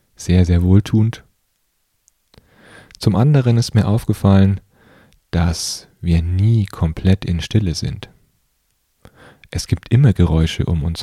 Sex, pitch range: male, 85-100 Hz